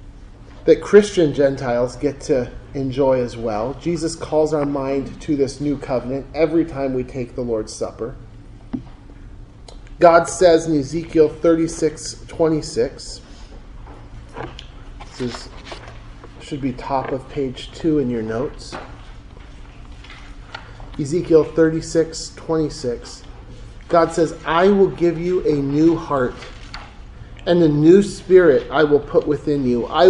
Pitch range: 130-170 Hz